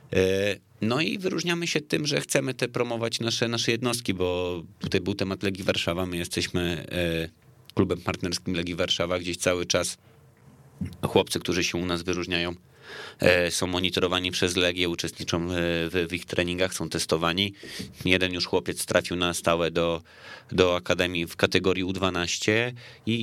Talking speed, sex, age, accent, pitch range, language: 145 wpm, male, 30-49, native, 90-100 Hz, Polish